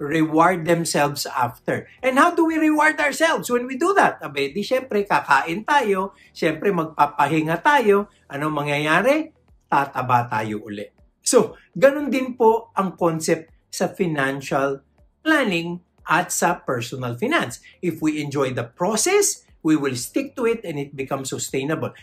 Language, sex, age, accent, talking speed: English, male, 60-79, Filipino, 145 wpm